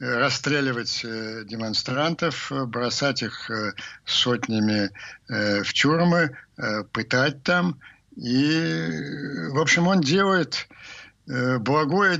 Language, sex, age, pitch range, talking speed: Ukrainian, male, 60-79, 115-145 Hz, 75 wpm